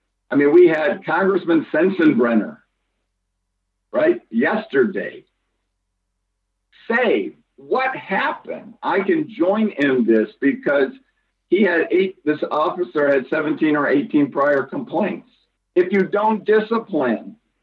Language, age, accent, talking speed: English, 50-69, American, 110 wpm